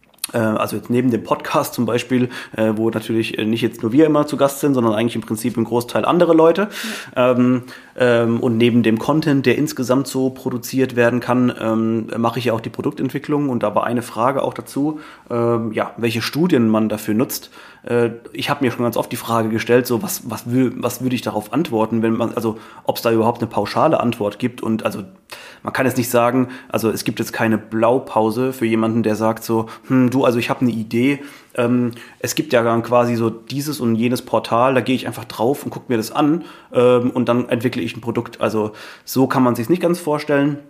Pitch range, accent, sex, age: 115-130 Hz, German, male, 30-49